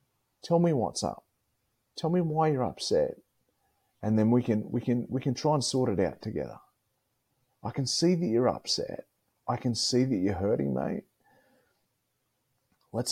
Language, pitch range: English, 110-140 Hz